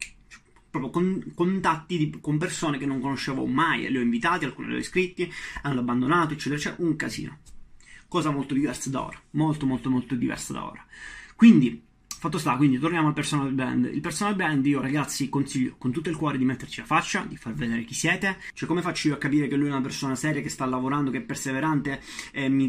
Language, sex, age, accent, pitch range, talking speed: Italian, male, 20-39, native, 130-150 Hz, 215 wpm